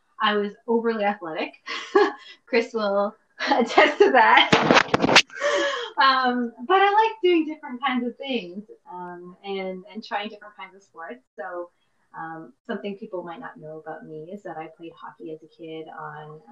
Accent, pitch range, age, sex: American, 180-230 Hz, 20-39, female